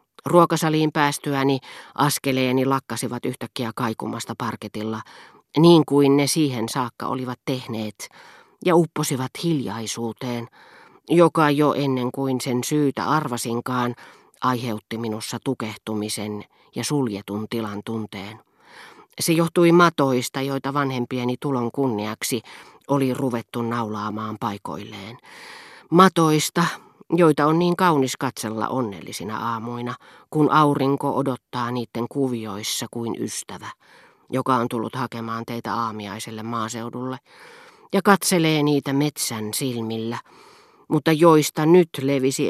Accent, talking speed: native, 105 wpm